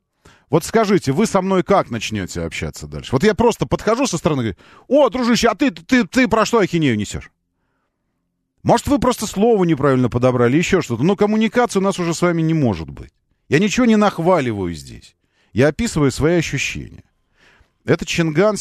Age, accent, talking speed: 40-59, native, 180 wpm